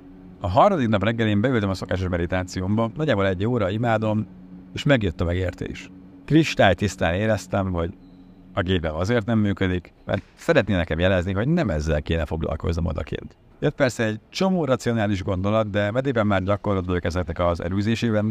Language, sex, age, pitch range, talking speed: Hungarian, male, 50-69, 90-115 Hz, 155 wpm